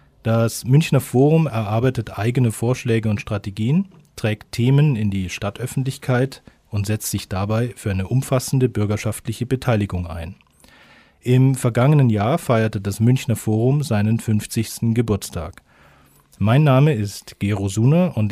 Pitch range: 105-130 Hz